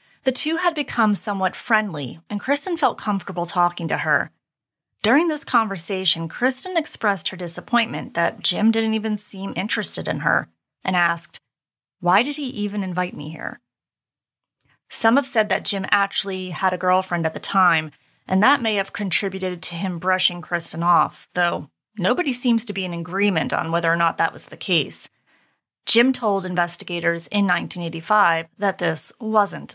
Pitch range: 175-225 Hz